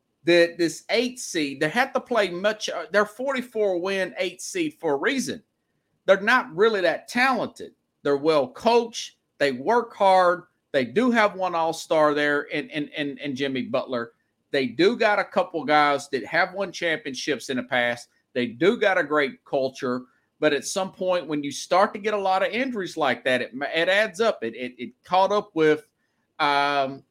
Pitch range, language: 145-205 Hz, English